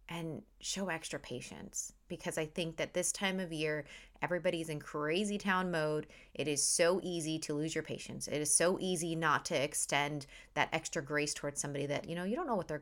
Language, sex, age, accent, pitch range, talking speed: English, female, 20-39, American, 155-220 Hz, 210 wpm